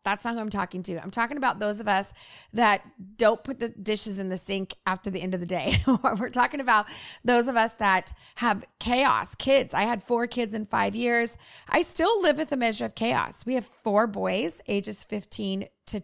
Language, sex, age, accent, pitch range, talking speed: English, female, 30-49, American, 195-245 Hz, 215 wpm